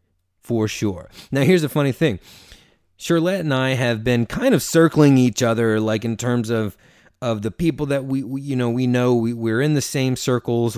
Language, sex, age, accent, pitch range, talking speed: English, male, 30-49, American, 100-125 Hz, 205 wpm